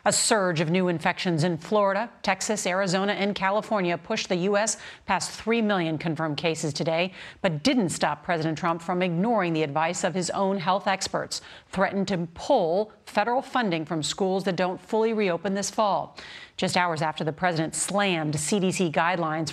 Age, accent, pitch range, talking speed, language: 40-59, American, 170-210 Hz, 170 wpm, English